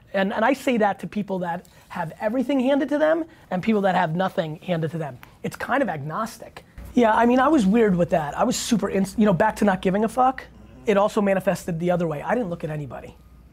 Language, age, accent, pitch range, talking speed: English, 30-49, American, 150-190 Hz, 250 wpm